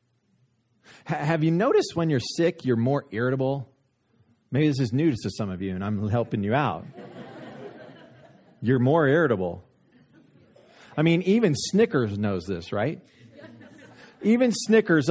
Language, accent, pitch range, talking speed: English, American, 115-170 Hz, 135 wpm